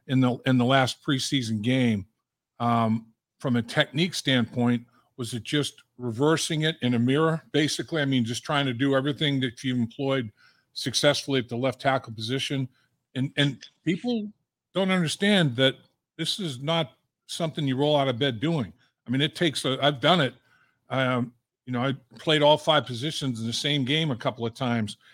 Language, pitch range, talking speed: English, 125-155 Hz, 185 wpm